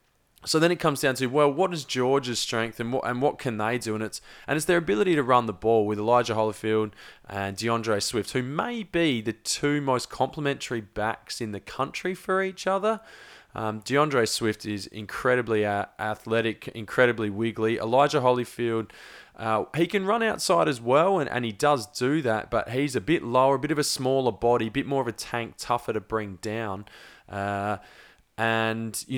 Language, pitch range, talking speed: English, 110-140 Hz, 195 wpm